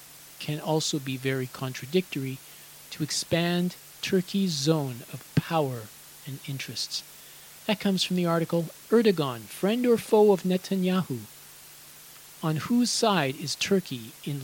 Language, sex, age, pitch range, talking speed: English, male, 40-59, 140-185 Hz, 125 wpm